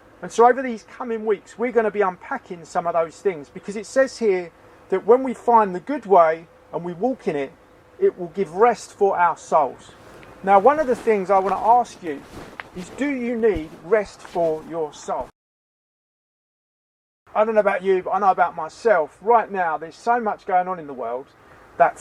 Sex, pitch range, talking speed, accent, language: male, 175-225 Hz, 205 wpm, British, English